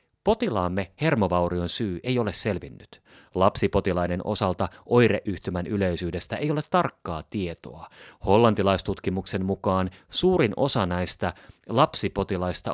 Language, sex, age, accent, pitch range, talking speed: Finnish, male, 30-49, native, 90-125 Hz, 95 wpm